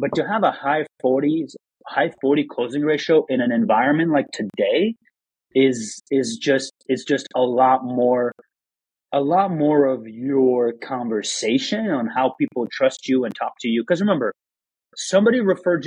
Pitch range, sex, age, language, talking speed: 130-165 Hz, male, 30-49, English, 160 wpm